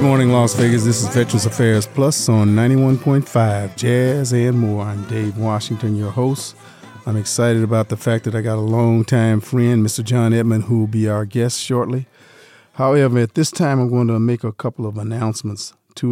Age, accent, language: 40-59, American, English